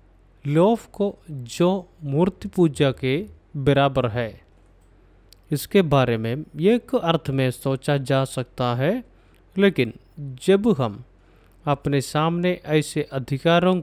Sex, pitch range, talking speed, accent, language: male, 105-165 Hz, 110 wpm, native, Malayalam